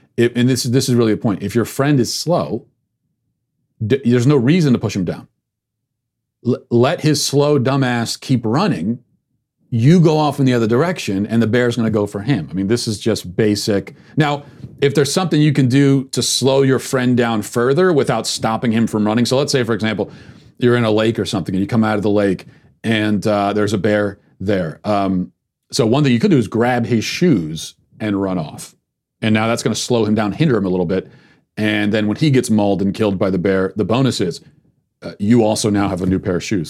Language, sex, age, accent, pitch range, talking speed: English, male, 40-59, American, 105-130 Hz, 230 wpm